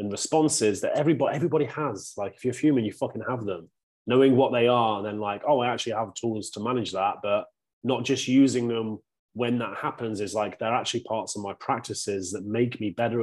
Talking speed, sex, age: 220 wpm, male, 30-49